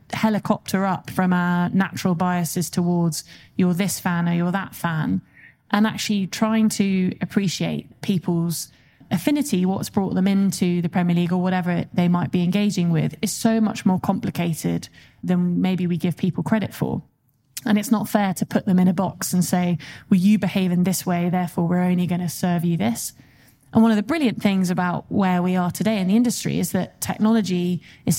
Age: 20-39